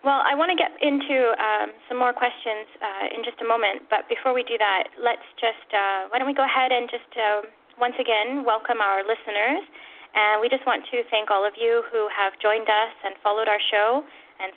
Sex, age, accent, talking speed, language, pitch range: female, 10-29, American, 225 wpm, English, 195-260 Hz